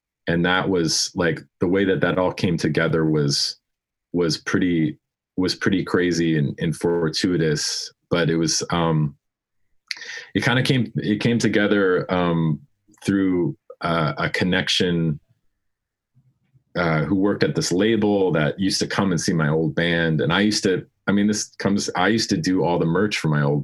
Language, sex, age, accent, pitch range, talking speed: English, male, 30-49, American, 75-105 Hz, 175 wpm